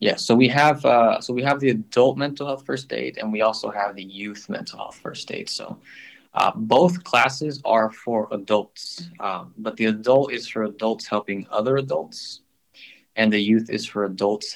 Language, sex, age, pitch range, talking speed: English, male, 20-39, 105-130 Hz, 195 wpm